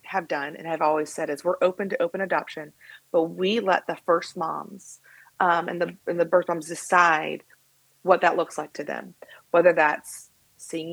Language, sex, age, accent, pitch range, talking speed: English, female, 30-49, American, 165-195 Hz, 190 wpm